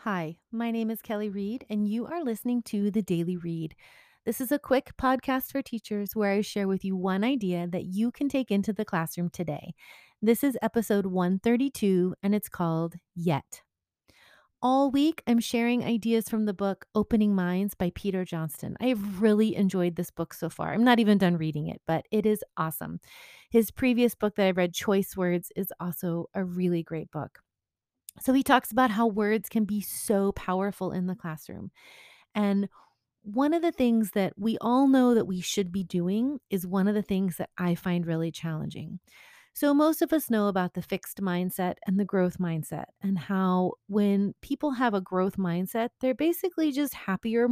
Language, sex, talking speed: English, female, 190 wpm